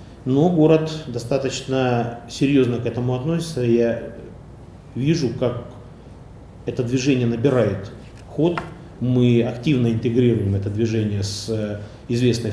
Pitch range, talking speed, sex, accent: 115-130 Hz, 100 wpm, male, native